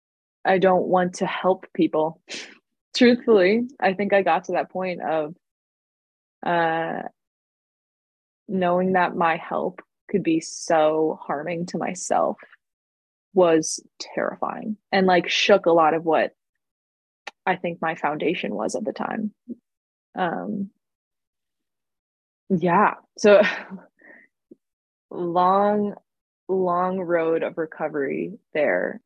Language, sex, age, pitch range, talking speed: English, female, 20-39, 155-190 Hz, 105 wpm